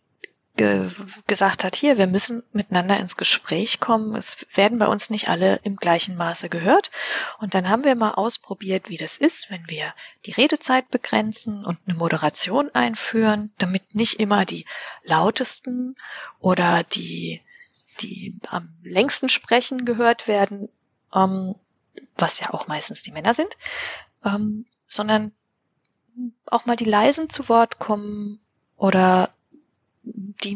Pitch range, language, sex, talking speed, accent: 185-225 Hz, German, female, 130 wpm, German